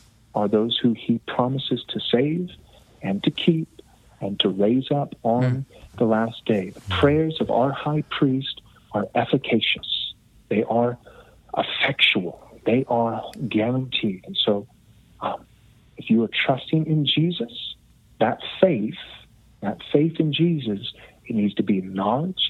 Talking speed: 140 wpm